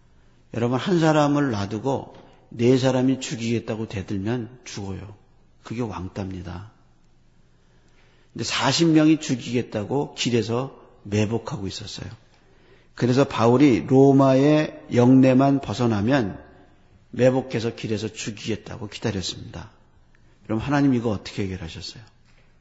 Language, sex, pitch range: Korean, male, 105-135 Hz